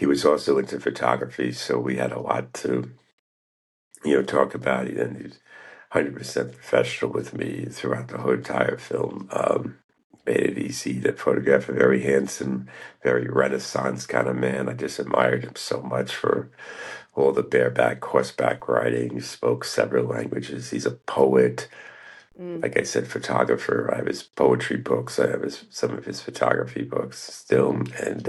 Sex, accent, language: male, American, English